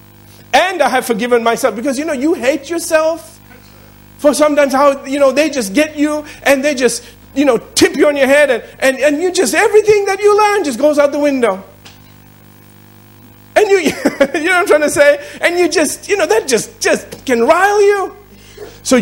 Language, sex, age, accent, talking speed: English, male, 50-69, American, 205 wpm